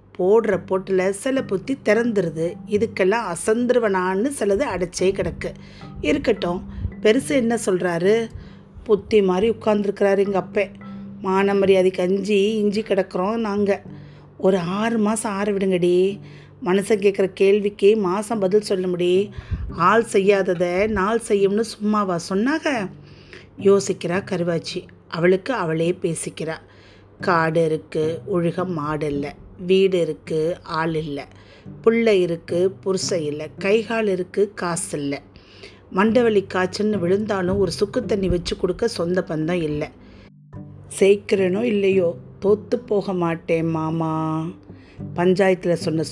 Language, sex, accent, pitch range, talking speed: Tamil, female, native, 165-200 Hz, 110 wpm